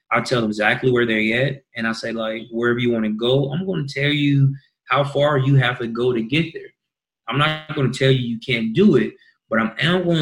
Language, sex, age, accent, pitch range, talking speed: English, male, 20-39, American, 110-140 Hz, 250 wpm